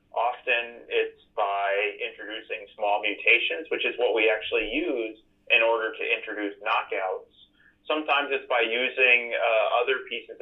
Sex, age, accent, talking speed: male, 30-49, American, 140 wpm